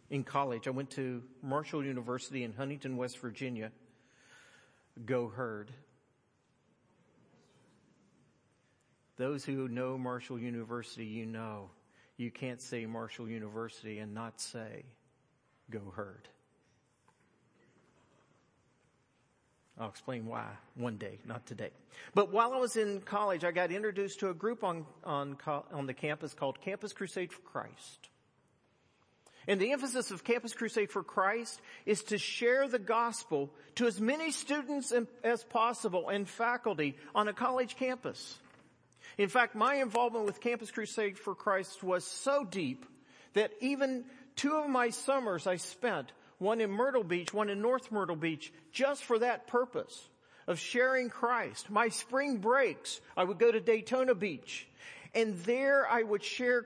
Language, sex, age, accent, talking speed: English, male, 50-69, American, 140 wpm